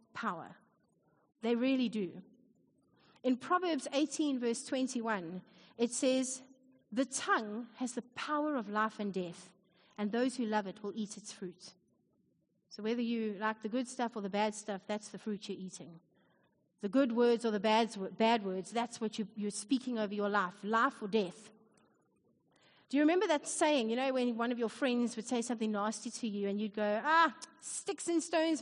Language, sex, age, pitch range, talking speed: English, female, 30-49, 215-270 Hz, 180 wpm